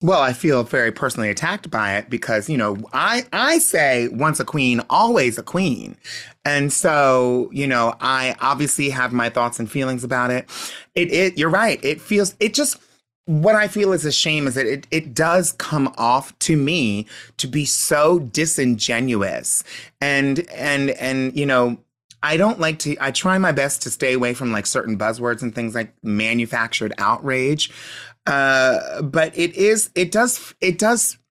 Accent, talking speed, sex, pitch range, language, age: American, 175 wpm, male, 120-165 Hz, English, 30-49